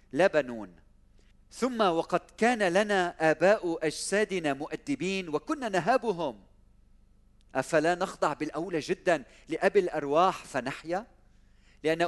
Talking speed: 90 wpm